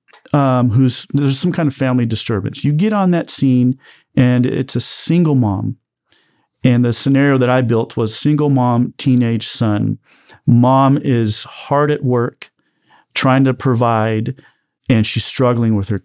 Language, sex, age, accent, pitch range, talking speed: English, male, 40-59, American, 115-135 Hz, 155 wpm